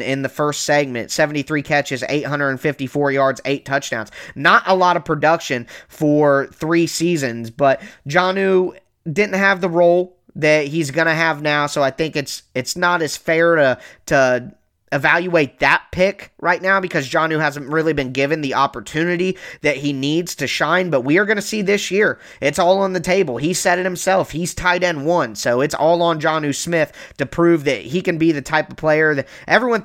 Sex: male